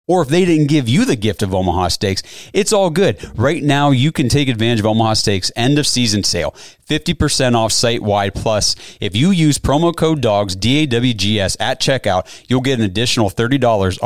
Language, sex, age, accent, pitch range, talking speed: English, male, 30-49, American, 105-140 Hz, 185 wpm